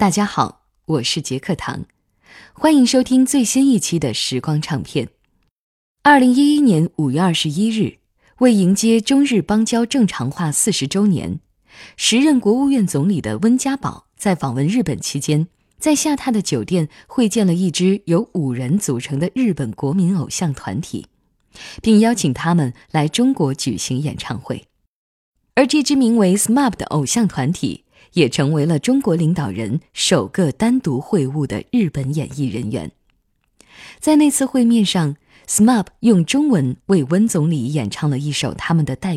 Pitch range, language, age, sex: 140-225 Hz, Chinese, 10-29, female